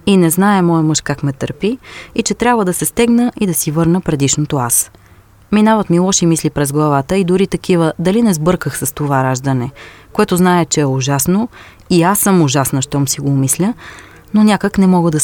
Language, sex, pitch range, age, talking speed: Bulgarian, female, 140-195 Hz, 30-49, 210 wpm